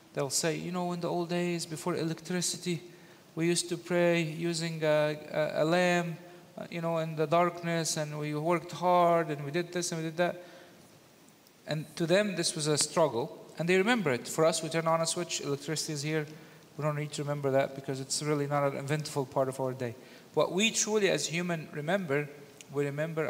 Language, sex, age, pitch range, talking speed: English, male, 40-59, 150-180 Hz, 210 wpm